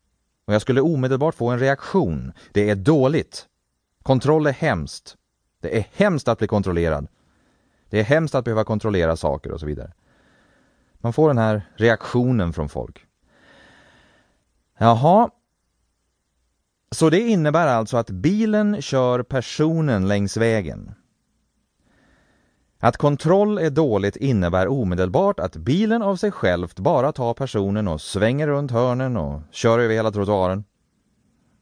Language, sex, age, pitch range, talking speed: English, male, 30-49, 85-135 Hz, 135 wpm